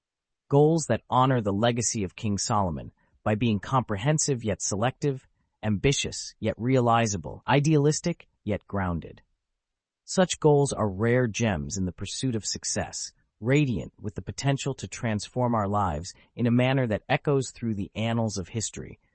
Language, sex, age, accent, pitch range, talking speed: English, male, 30-49, American, 95-130 Hz, 145 wpm